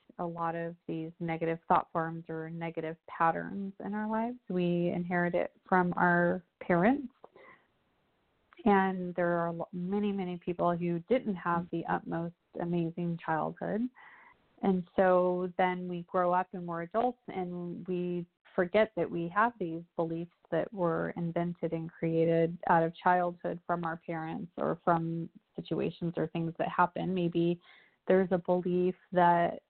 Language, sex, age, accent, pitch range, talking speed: English, female, 30-49, American, 170-190 Hz, 145 wpm